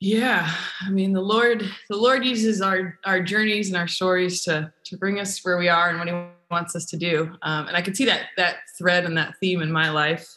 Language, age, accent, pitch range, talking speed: English, 20-39, American, 160-195 Hz, 245 wpm